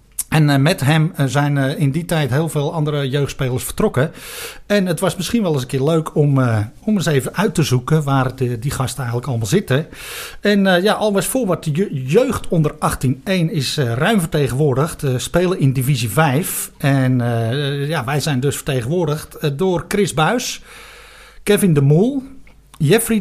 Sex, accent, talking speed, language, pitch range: male, Dutch, 165 wpm, Dutch, 140-190 Hz